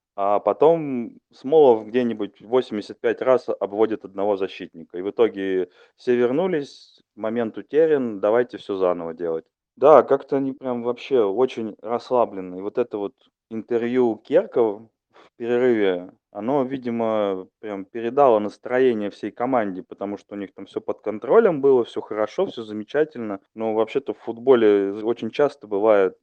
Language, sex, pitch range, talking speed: Russian, male, 100-120 Hz, 140 wpm